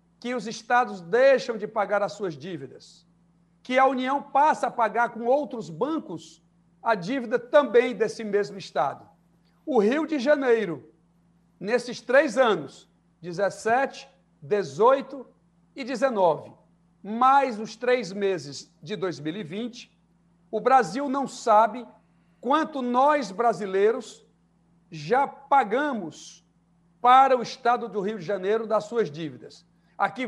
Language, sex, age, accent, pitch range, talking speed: Portuguese, male, 60-79, Brazilian, 200-270 Hz, 120 wpm